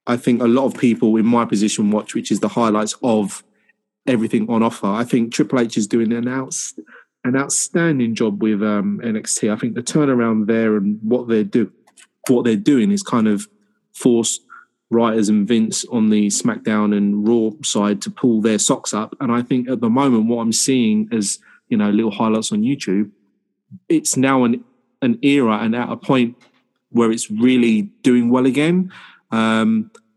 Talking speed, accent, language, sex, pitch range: 185 wpm, British, English, male, 110-135 Hz